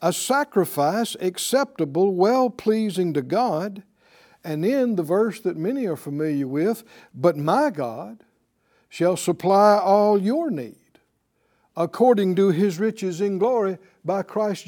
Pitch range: 170-220 Hz